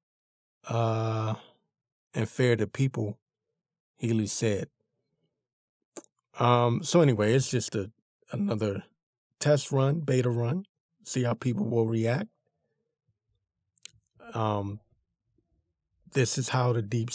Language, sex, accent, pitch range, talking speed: English, male, American, 115-145 Hz, 100 wpm